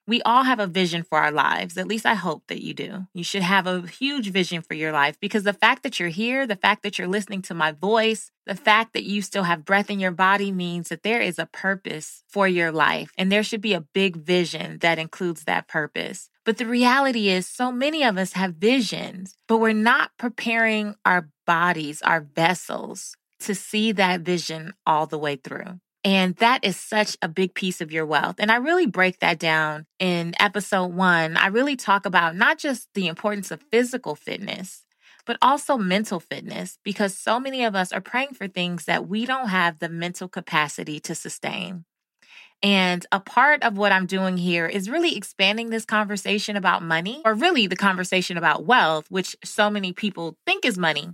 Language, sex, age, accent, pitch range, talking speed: English, female, 20-39, American, 170-215 Hz, 205 wpm